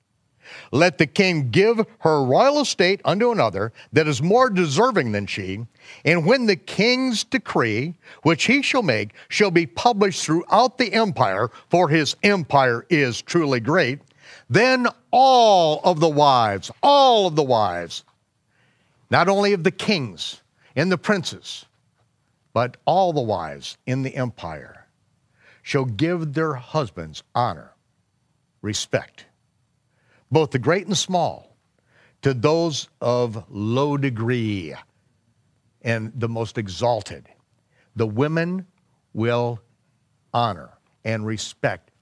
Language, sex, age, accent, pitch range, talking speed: English, male, 50-69, American, 120-185 Hz, 125 wpm